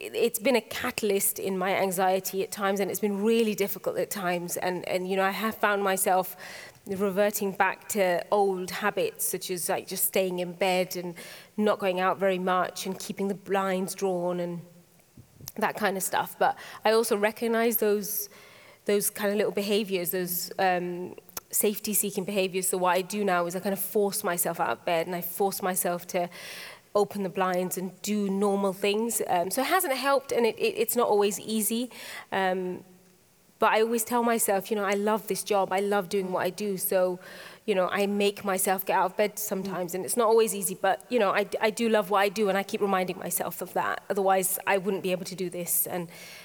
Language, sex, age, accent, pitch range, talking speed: English, female, 20-39, British, 185-210 Hz, 210 wpm